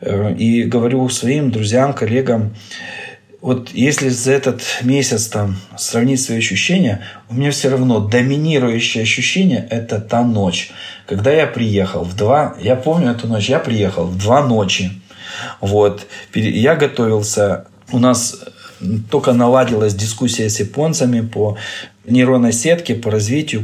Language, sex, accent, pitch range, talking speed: Russian, male, native, 105-130 Hz, 125 wpm